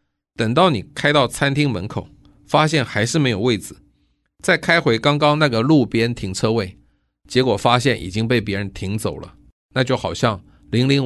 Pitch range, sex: 100-130 Hz, male